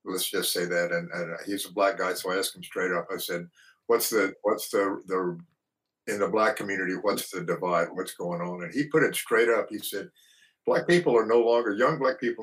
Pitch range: 95-120 Hz